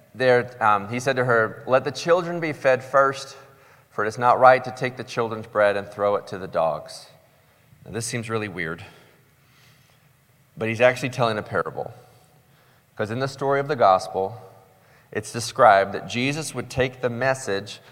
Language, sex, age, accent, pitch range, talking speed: English, male, 30-49, American, 110-135 Hz, 180 wpm